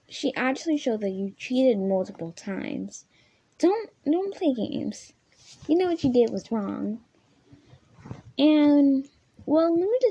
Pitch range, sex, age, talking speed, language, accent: 210-280 Hz, female, 10-29, 140 wpm, English, American